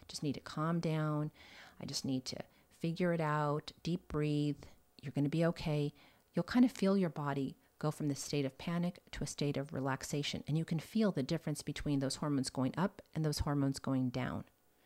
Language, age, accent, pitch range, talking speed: English, 40-59, American, 140-175 Hz, 210 wpm